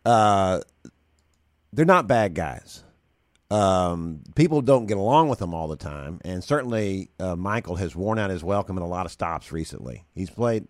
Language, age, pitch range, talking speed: English, 50-69, 85-115 Hz, 180 wpm